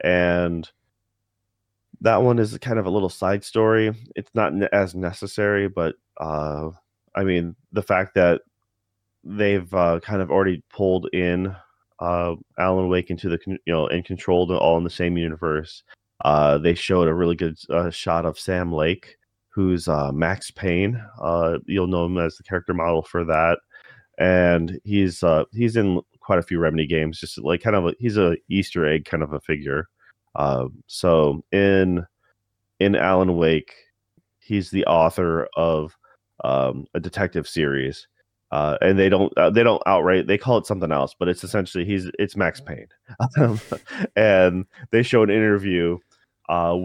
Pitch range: 85-100 Hz